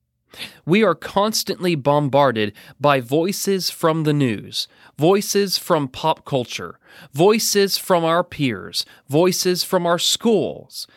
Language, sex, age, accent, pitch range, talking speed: English, male, 30-49, American, 120-175 Hz, 115 wpm